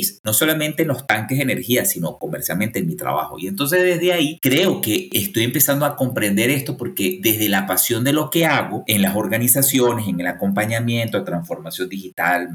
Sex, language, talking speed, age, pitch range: male, Spanish, 190 wpm, 50-69, 105-150 Hz